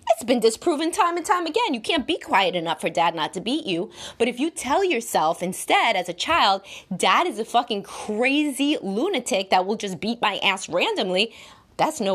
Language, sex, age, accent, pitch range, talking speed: English, female, 20-39, American, 185-260 Hz, 205 wpm